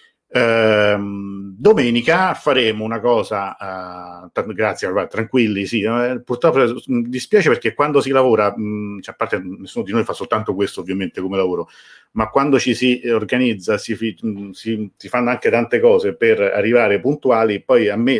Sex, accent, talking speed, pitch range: male, native, 165 wpm, 100-125 Hz